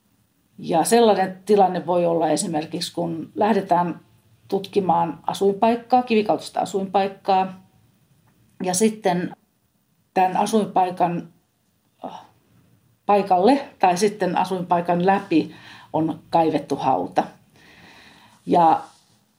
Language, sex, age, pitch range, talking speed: Finnish, female, 40-59, 165-195 Hz, 75 wpm